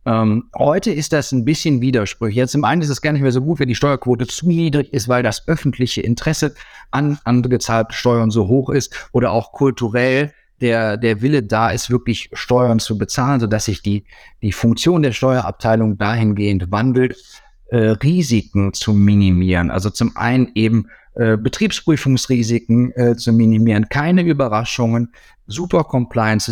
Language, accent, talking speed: German, German, 160 wpm